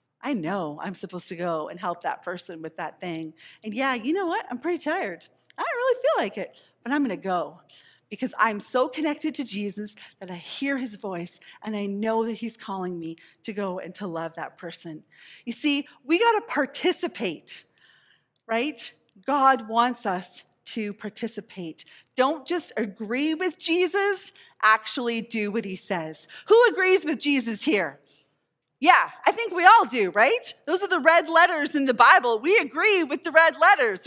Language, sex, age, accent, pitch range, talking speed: English, female, 40-59, American, 205-320 Hz, 185 wpm